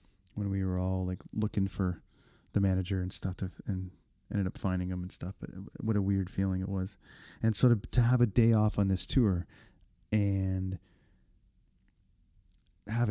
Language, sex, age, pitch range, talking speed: English, male, 30-49, 95-110 Hz, 175 wpm